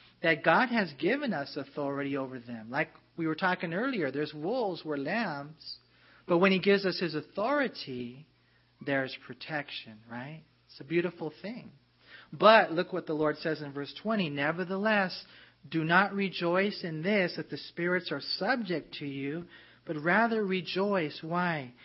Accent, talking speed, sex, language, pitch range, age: American, 160 wpm, male, English, 150-195 Hz, 40-59